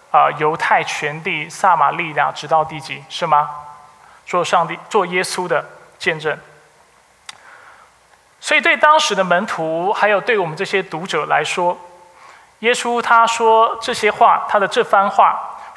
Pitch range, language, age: 160-230 Hz, Chinese, 20-39